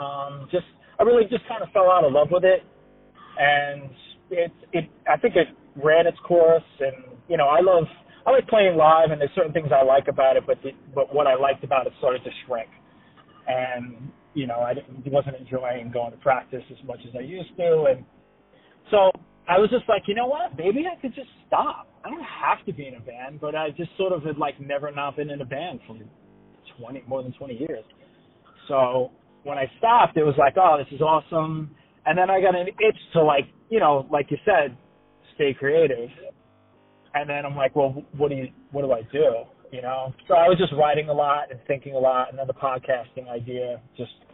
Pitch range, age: 130-165 Hz, 30-49